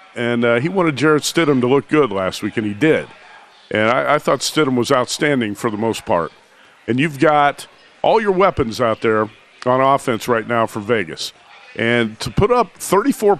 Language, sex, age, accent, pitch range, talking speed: English, male, 50-69, American, 120-150 Hz, 195 wpm